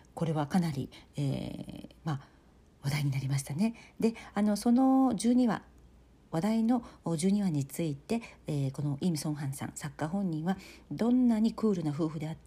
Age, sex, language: 50-69, female, Japanese